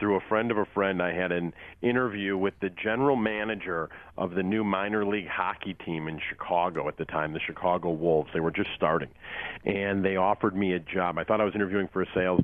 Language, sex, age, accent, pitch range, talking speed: English, male, 40-59, American, 90-110 Hz, 225 wpm